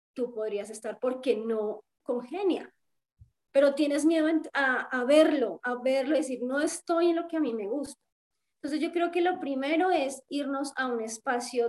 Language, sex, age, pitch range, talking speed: Spanish, female, 20-39, 240-300 Hz, 185 wpm